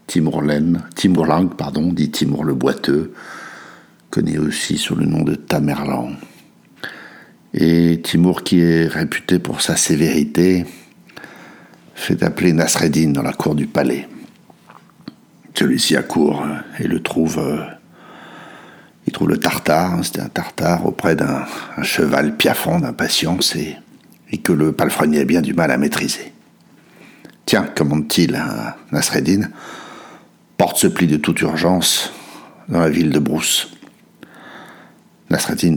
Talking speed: 125 wpm